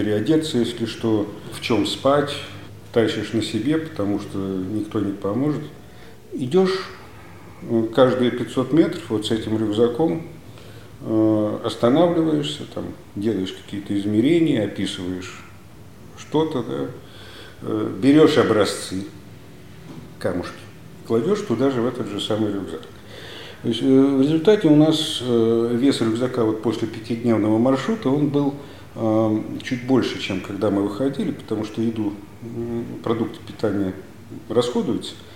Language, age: Russian, 50-69